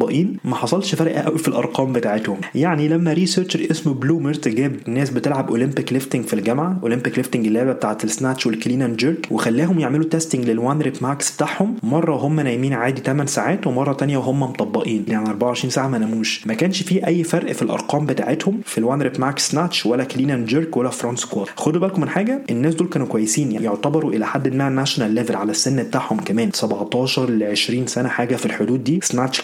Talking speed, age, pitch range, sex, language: 195 wpm, 20-39, 125-160 Hz, male, Arabic